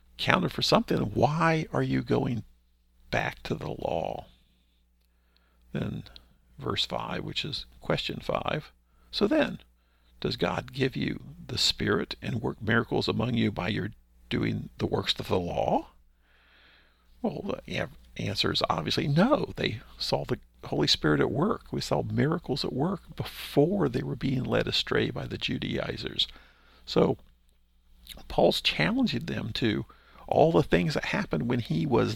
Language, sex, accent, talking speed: English, male, American, 145 wpm